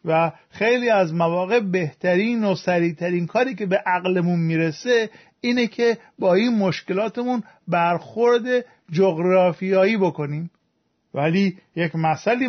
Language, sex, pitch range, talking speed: Persian, male, 165-215 Hz, 110 wpm